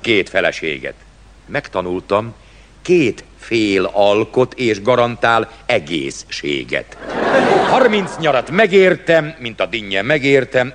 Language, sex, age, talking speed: Hungarian, male, 60-79, 90 wpm